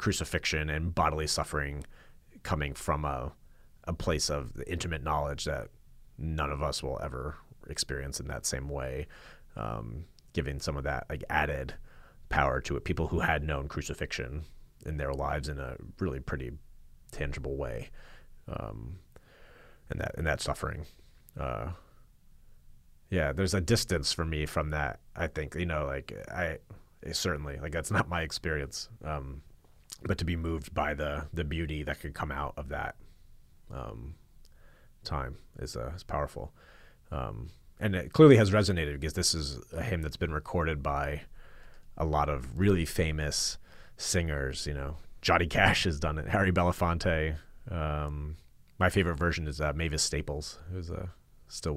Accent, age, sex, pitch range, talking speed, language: American, 30-49, male, 70-85 Hz, 160 wpm, English